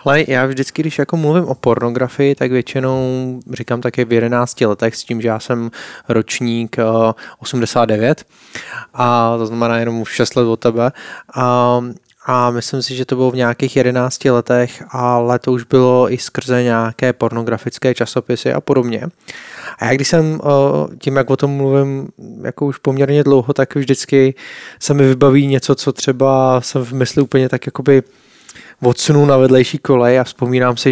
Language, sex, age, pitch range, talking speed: Slovak, male, 20-39, 120-135 Hz, 175 wpm